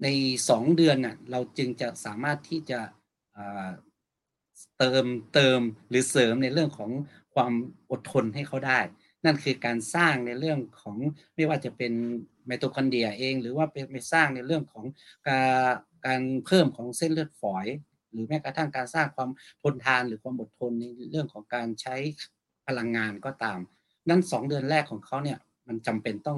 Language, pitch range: English, 115-150 Hz